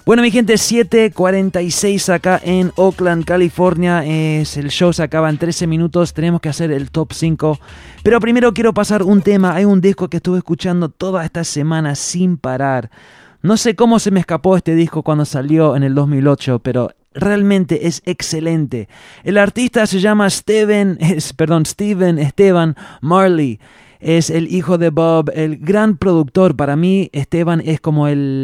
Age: 20-39